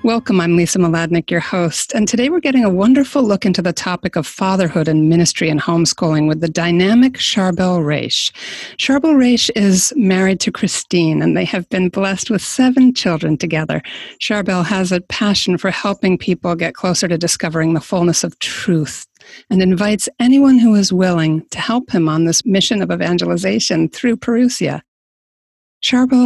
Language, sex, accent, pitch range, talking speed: English, female, American, 170-220 Hz, 170 wpm